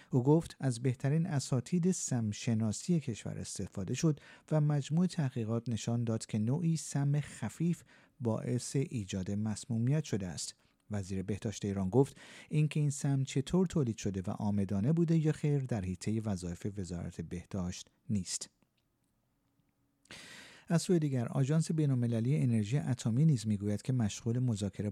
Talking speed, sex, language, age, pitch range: 135 wpm, male, Persian, 50-69, 100-145 Hz